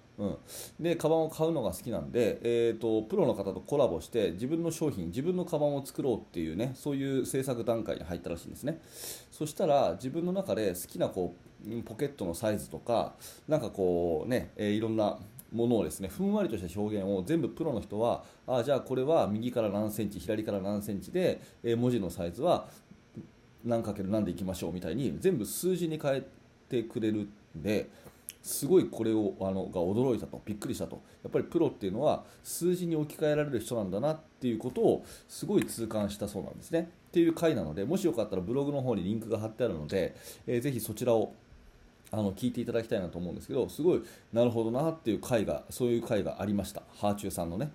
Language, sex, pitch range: Japanese, male, 105-145 Hz